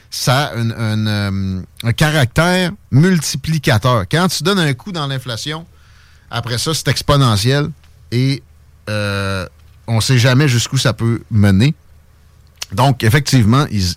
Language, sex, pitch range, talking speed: French, male, 95-145 Hz, 135 wpm